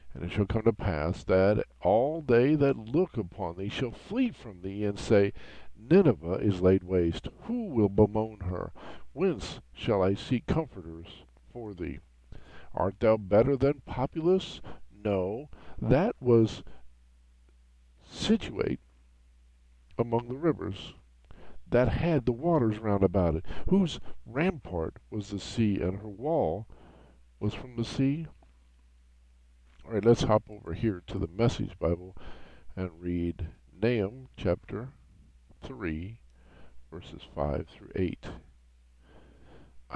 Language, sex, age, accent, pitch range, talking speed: English, male, 50-69, American, 80-125 Hz, 125 wpm